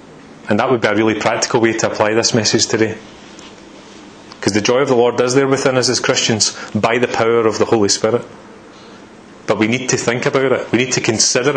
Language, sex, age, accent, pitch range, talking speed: English, male, 30-49, British, 110-130 Hz, 225 wpm